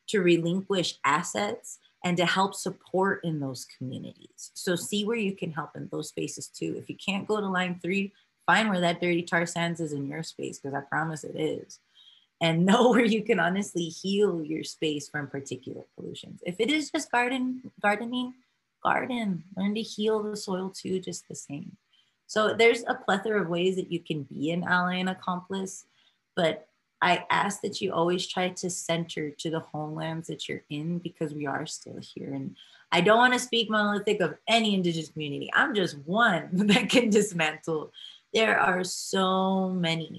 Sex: female